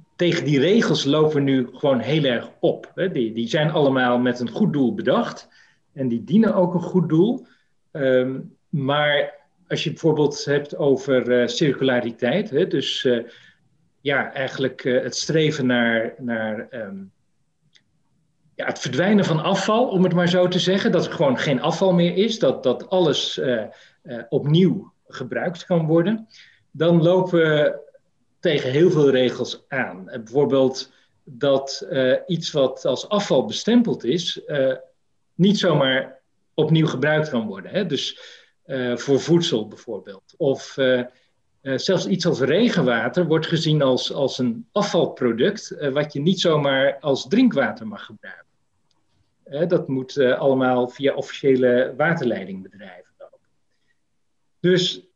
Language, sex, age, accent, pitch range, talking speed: Dutch, male, 40-59, Dutch, 130-180 Hz, 135 wpm